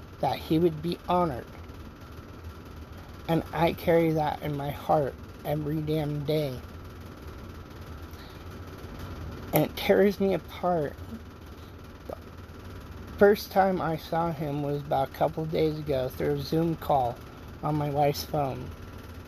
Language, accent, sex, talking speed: English, American, male, 120 wpm